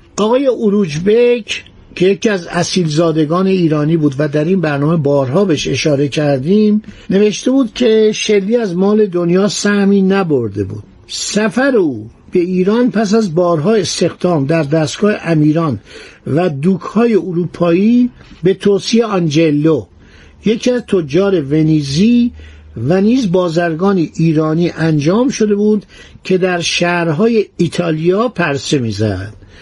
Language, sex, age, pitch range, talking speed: Persian, male, 60-79, 150-205 Hz, 125 wpm